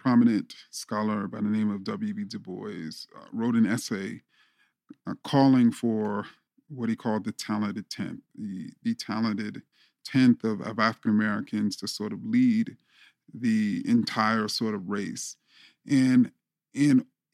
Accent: American